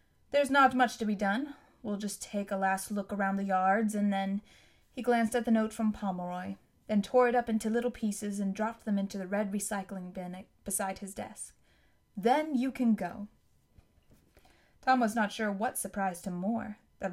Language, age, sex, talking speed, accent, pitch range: English, 20-39, female, 190 wpm, American, 200-235 Hz